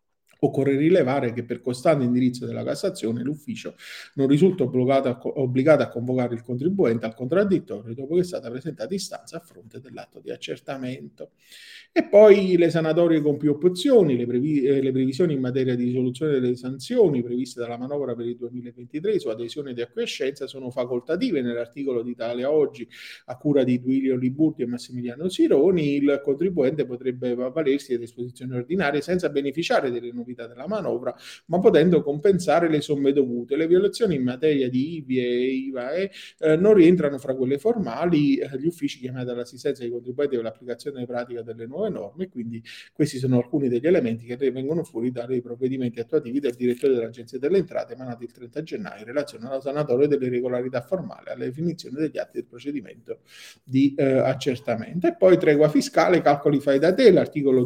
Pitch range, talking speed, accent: 125-155 Hz, 170 wpm, native